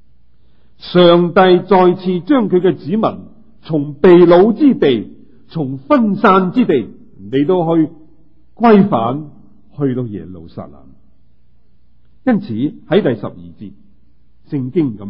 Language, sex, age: Chinese, male, 50-69